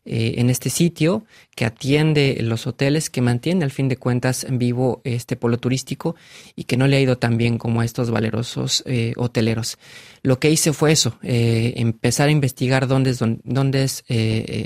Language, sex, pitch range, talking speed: Spanish, male, 120-135 Hz, 195 wpm